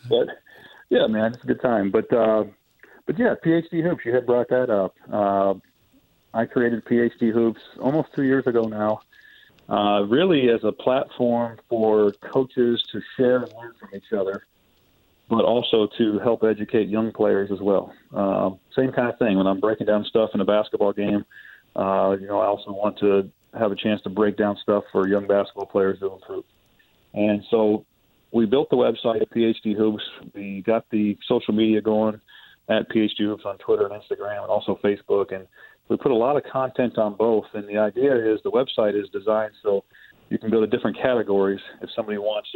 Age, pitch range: 40-59, 105-120 Hz